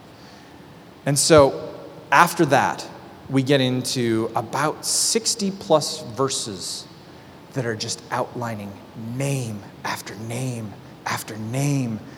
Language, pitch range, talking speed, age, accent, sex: English, 130-180 Hz, 100 wpm, 30-49, American, male